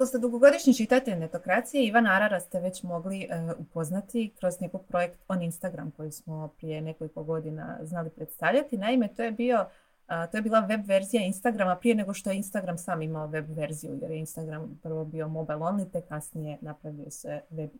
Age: 30-49